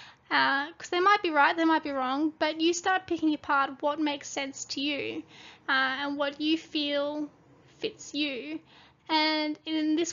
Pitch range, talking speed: 275-315 Hz, 180 wpm